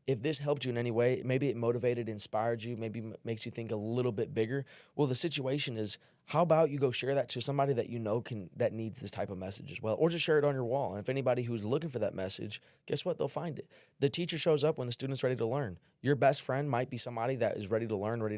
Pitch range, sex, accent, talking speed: 110-130 Hz, male, American, 280 wpm